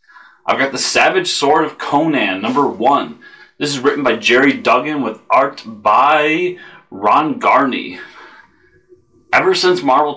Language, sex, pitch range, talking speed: English, male, 100-125 Hz, 135 wpm